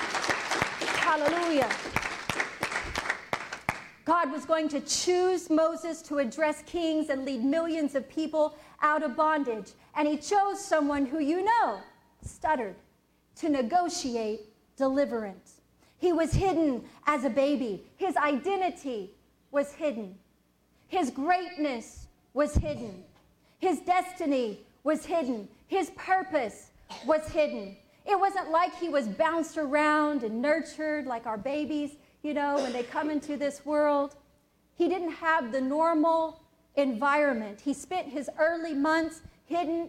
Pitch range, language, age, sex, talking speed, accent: 275-325 Hz, English, 40-59, female, 125 wpm, American